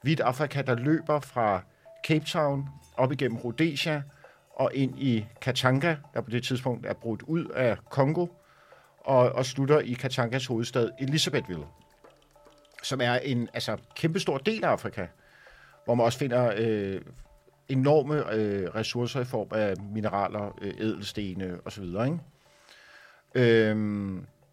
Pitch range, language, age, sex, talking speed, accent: 115-145 Hz, Danish, 50-69, male, 130 wpm, native